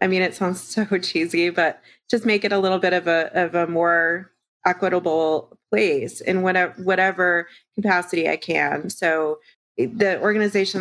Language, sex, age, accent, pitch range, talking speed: English, female, 30-49, American, 170-200 Hz, 160 wpm